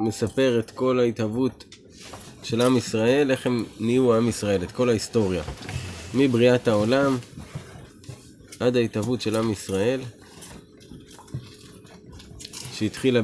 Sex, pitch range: male, 105-125 Hz